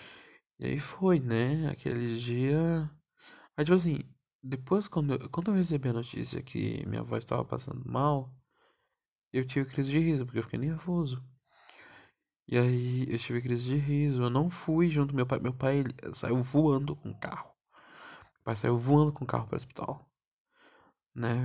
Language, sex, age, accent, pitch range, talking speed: Portuguese, male, 20-39, Brazilian, 125-150 Hz, 180 wpm